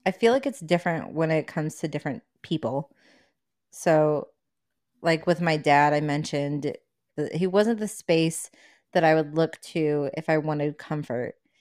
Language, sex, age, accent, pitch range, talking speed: English, female, 30-49, American, 145-165 Hz, 165 wpm